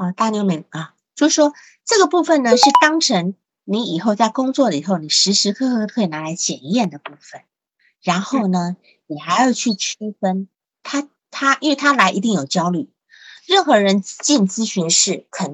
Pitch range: 185-265 Hz